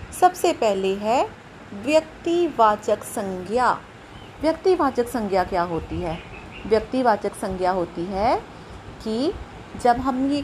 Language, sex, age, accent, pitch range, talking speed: Hindi, female, 30-49, native, 205-285 Hz, 105 wpm